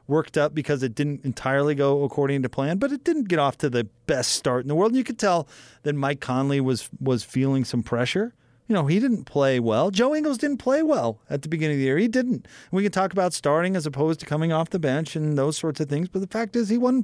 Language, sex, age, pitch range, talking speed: English, male, 30-49, 130-180 Hz, 270 wpm